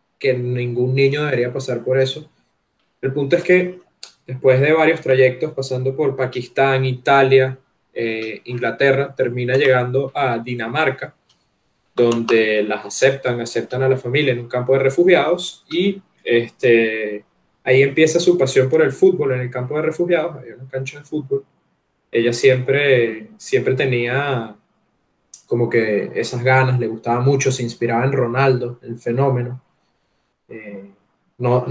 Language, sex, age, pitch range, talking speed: Spanish, male, 20-39, 120-135 Hz, 140 wpm